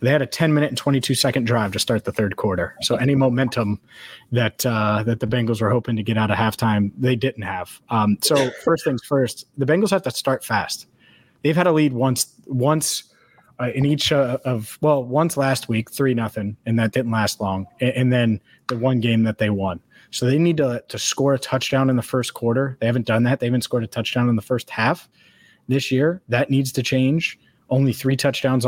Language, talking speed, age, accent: English, 225 wpm, 20-39, American